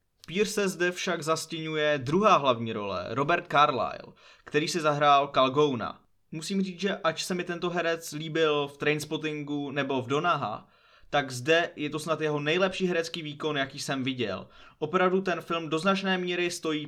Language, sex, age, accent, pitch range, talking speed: Czech, male, 20-39, native, 125-160 Hz, 165 wpm